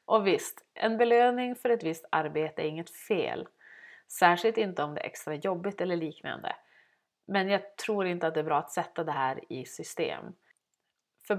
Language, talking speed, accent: Swedish, 185 wpm, native